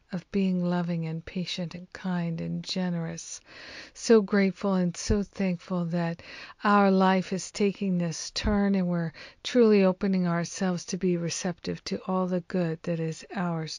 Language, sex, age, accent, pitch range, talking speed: English, female, 50-69, American, 175-200 Hz, 155 wpm